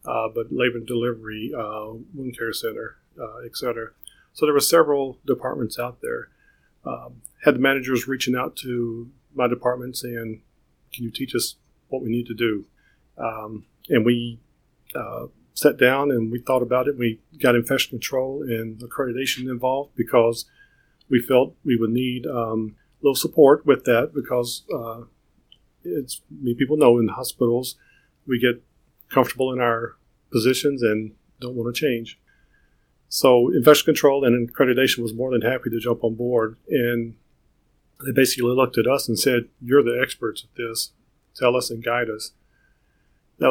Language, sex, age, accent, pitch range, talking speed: English, male, 40-59, American, 115-130 Hz, 165 wpm